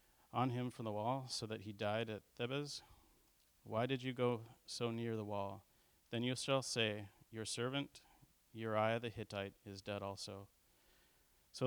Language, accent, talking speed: English, American, 165 wpm